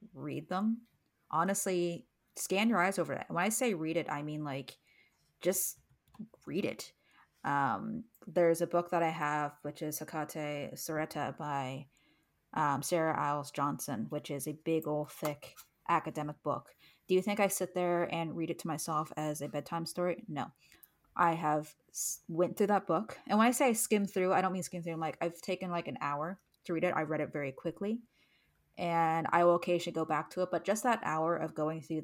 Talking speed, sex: 200 wpm, female